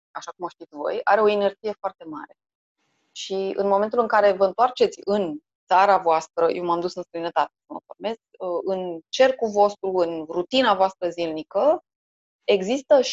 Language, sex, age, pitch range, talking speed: Romanian, female, 20-39, 180-240 Hz, 150 wpm